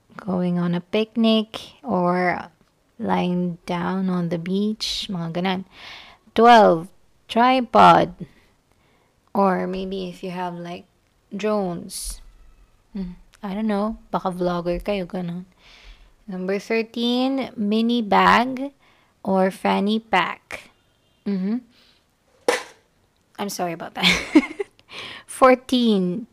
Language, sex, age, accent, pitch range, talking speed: English, female, 20-39, Filipino, 180-220 Hz, 95 wpm